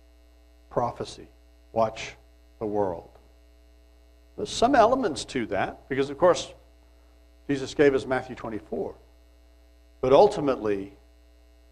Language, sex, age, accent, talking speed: English, male, 60-79, American, 95 wpm